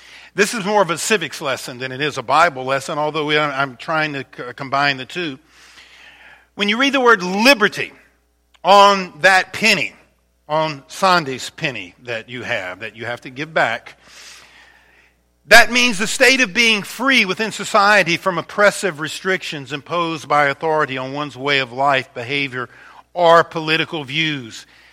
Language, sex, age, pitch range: English, male, 50-69, 145-225 Hz